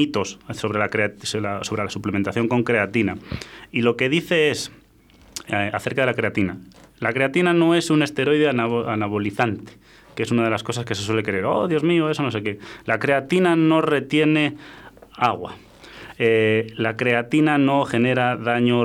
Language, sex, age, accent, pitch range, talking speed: Spanish, male, 20-39, Spanish, 105-135 Hz, 160 wpm